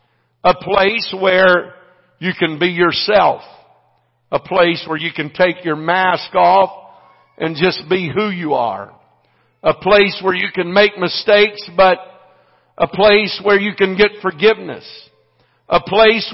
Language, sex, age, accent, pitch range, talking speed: English, male, 50-69, American, 155-210 Hz, 145 wpm